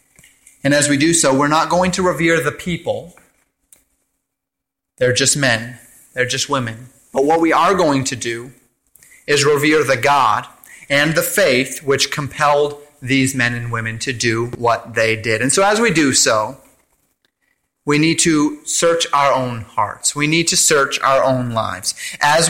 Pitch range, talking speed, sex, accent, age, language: 125-165 Hz, 170 wpm, male, American, 30-49, English